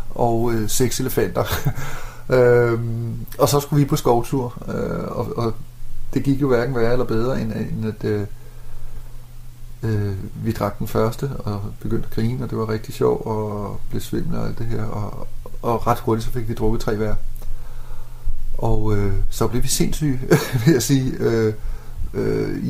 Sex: male